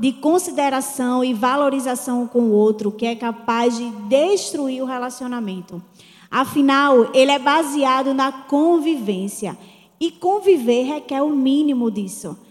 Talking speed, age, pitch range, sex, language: 125 wpm, 20-39, 240-320 Hz, female, Portuguese